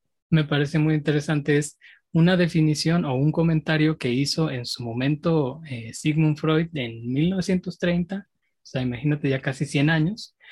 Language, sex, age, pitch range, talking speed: Spanish, male, 20-39, 135-165 Hz, 155 wpm